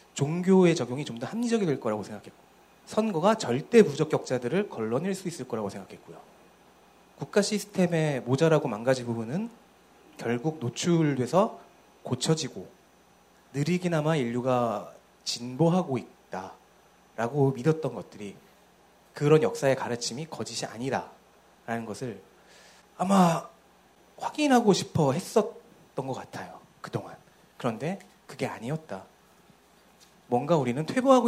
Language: Korean